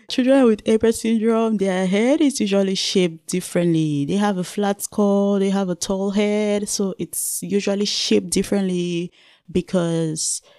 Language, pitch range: English, 155-205 Hz